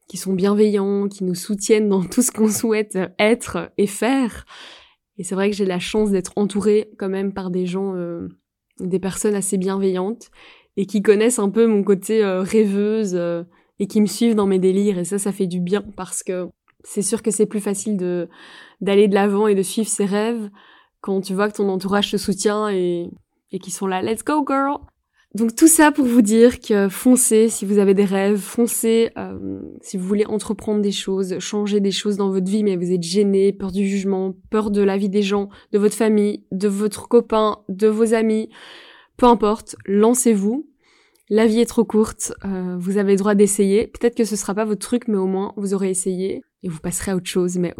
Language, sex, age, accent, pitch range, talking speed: French, female, 20-39, French, 190-215 Hz, 220 wpm